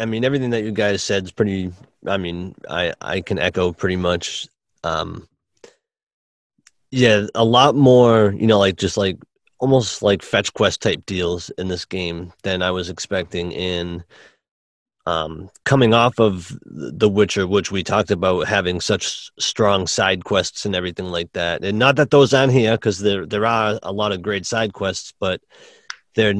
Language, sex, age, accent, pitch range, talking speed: English, male, 30-49, American, 90-110 Hz, 175 wpm